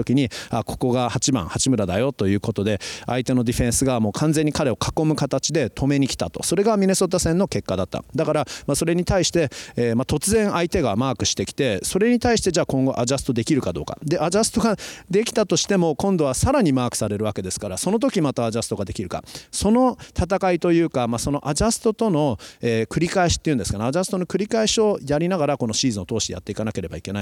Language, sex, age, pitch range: Japanese, male, 40-59, 110-155 Hz